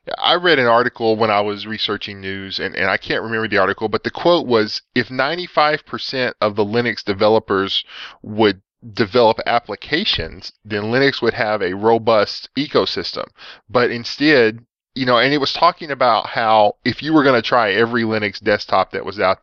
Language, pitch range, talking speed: English, 100-120 Hz, 180 wpm